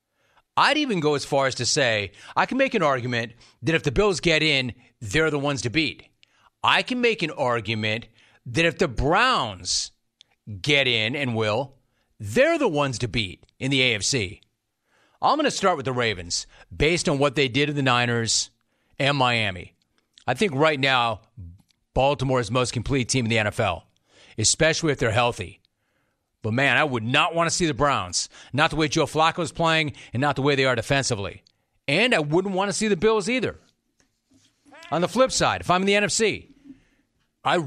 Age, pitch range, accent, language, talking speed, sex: 40-59, 115-160 Hz, American, English, 195 wpm, male